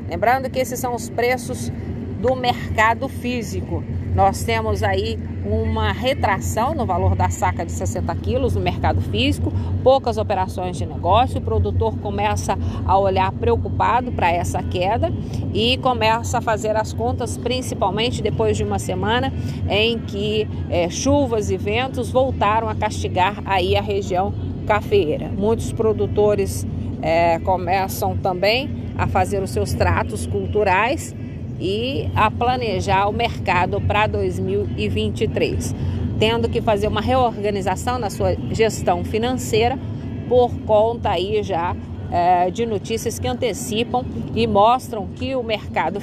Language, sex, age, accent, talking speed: Portuguese, female, 50-69, Brazilian, 130 wpm